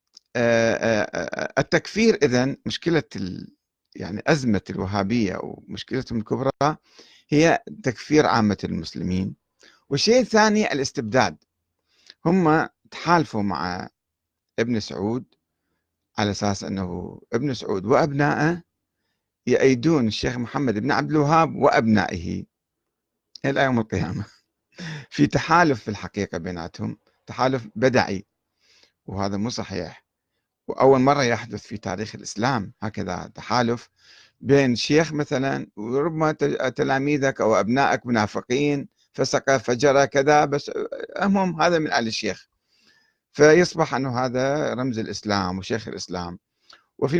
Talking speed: 100 wpm